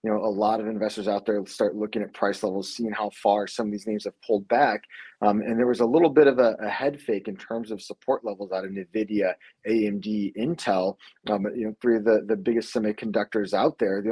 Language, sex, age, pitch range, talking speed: English, male, 20-39, 105-120 Hz, 240 wpm